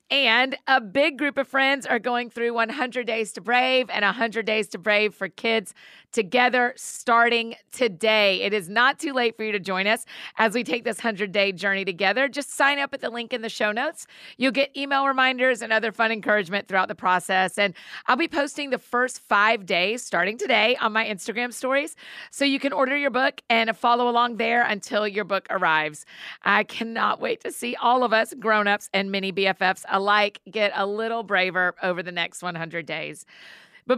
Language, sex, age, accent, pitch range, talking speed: English, female, 40-59, American, 195-240 Hz, 200 wpm